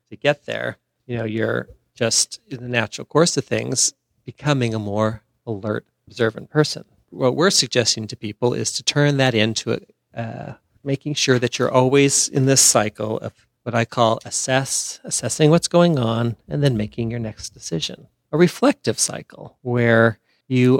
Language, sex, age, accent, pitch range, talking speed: English, male, 40-59, American, 115-150 Hz, 165 wpm